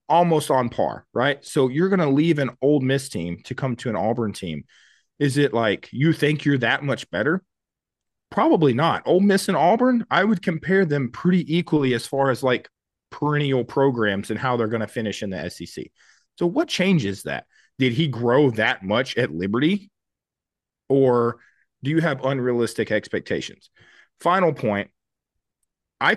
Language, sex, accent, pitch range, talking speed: English, male, American, 105-150 Hz, 170 wpm